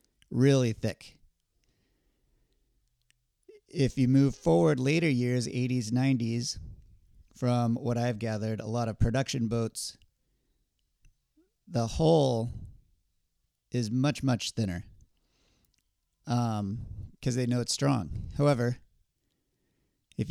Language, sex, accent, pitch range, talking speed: English, male, American, 100-135 Hz, 100 wpm